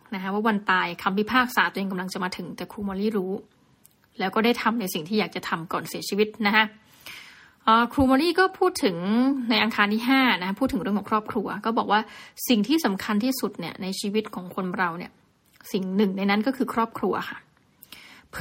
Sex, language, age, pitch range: female, Thai, 20-39, 200-250 Hz